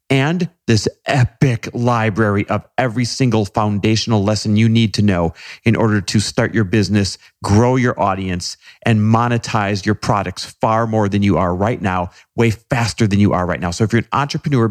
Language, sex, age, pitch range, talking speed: English, male, 40-59, 100-130 Hz, 185 wpm